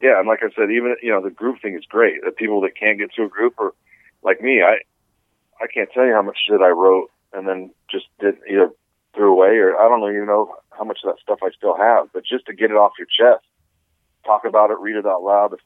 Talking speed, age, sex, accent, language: 270 wpm, 40-59, male, American, English